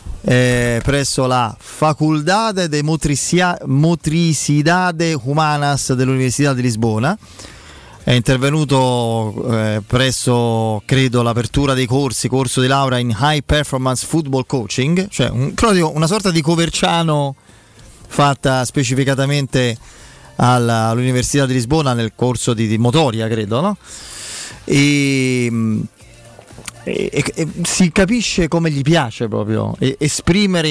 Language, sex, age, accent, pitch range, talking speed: Italian, male, 30-49, native, 120-150 Hz, 110 wpm